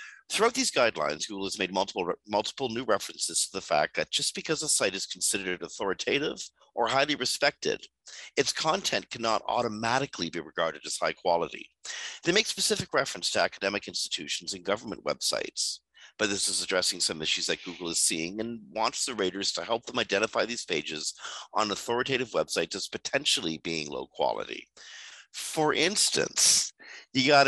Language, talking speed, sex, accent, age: English, 165 wpm, male, American, 50-69